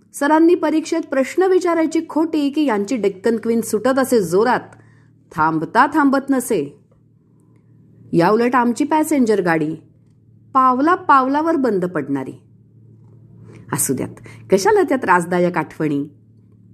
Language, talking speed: English, 105 wpm